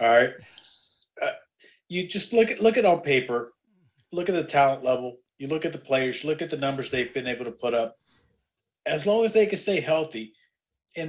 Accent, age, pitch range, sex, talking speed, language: American, 30-49, 125-155 Hz, male, 215 wpm, English